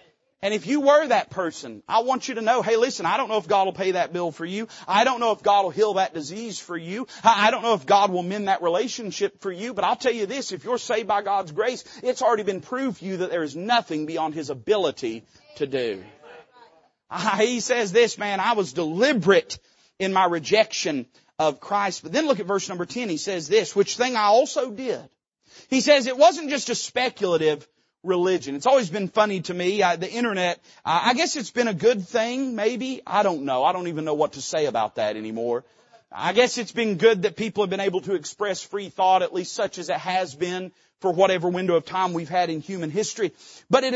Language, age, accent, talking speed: English, 40-59, American, 235 wpm